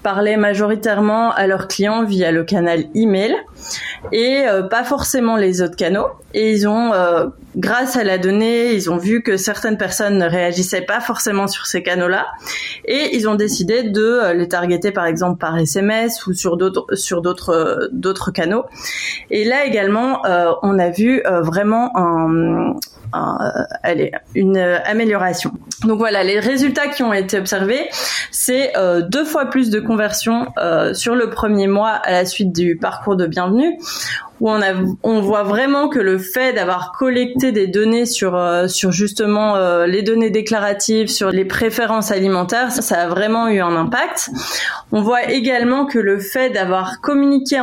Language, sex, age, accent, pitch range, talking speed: French, female, 20-39, French, 185-235 Hz, 165 wpm